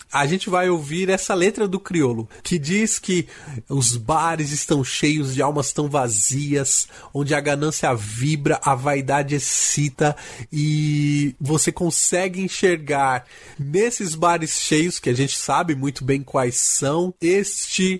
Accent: Brazilian